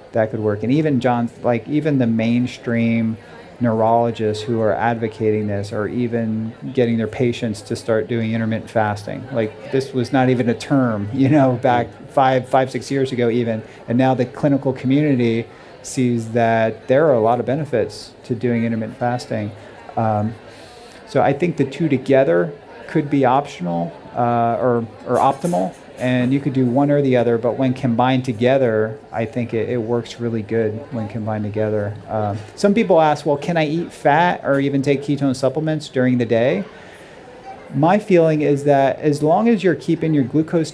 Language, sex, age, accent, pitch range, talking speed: English, male, 40-59, American, 115-140 Hz, 180 wpm